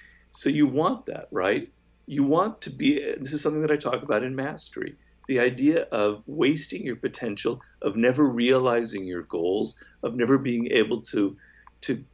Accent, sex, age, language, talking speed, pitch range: American, male, 50-69, English, 175 wpm, 110-150 Hz